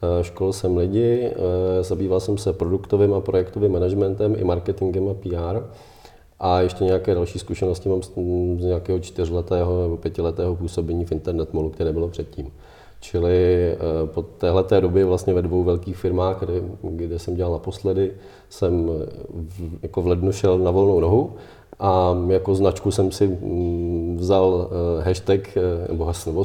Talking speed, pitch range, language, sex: 140 wpm, 85-95 Hz, Czech, male